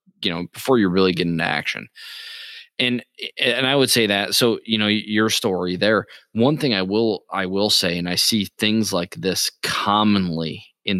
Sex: male